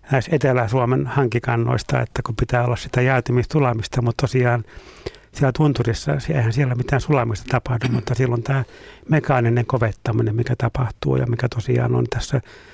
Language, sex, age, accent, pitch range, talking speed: Finnish, male, 60-79, native, 120-135 Hz, 140 wpm